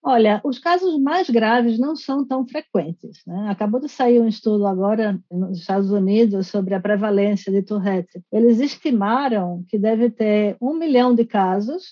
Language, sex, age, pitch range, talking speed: Portuguese, female, 50-69, 195-235 Hz, 165 wpm